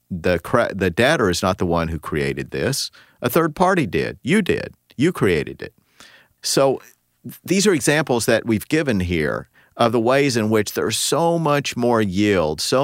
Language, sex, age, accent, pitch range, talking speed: English, male, 50-69, American, 80-105 Hz, 180 wpm